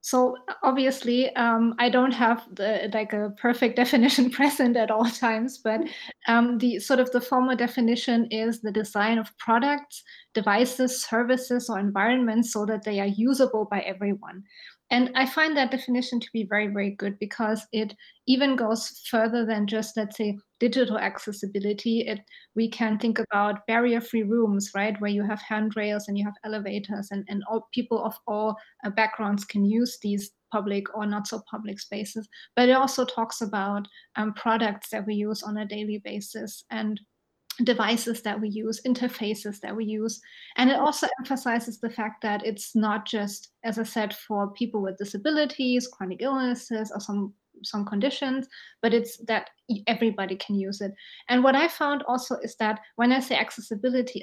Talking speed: 170 wpm